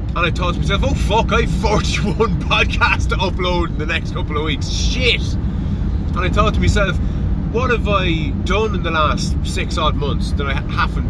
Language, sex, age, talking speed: English, male, 30-49, 205 wpm